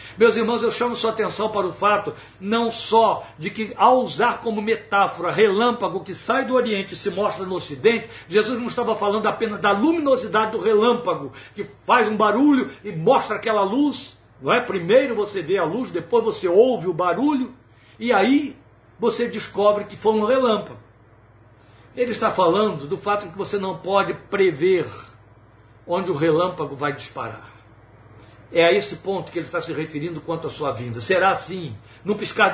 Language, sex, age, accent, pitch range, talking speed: Portuguese, male, 60-79, Brazilian, 135-220 Hz, 175 wpm